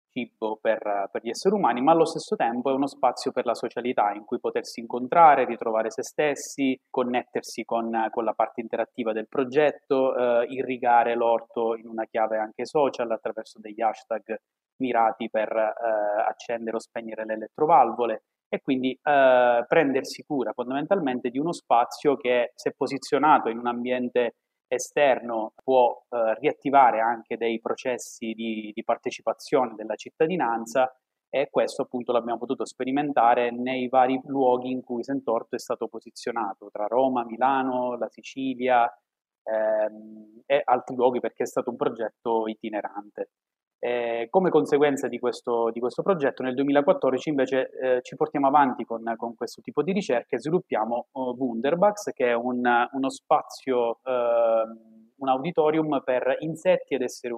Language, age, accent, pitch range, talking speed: Italian, 30-49, native, 115-135 Hz, 150 wpm